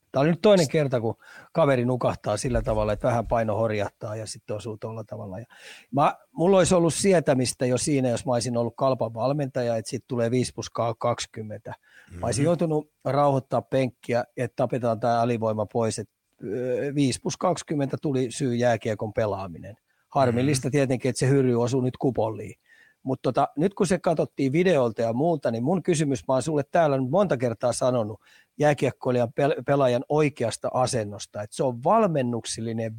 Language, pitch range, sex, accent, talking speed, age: Finnish, 115-145 Hz, male, native, 165 wpm, 30-49